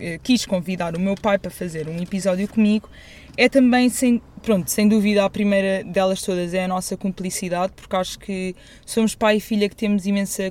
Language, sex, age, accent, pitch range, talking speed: Portuguese, female, 20-39, Brazilian, 200-255 Hz, 190 wpm